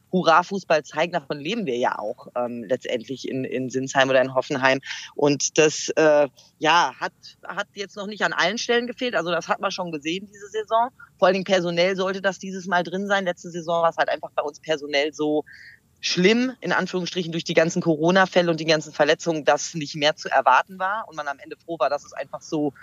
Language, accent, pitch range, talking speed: German, German, 150-190 Hz, 215 wpm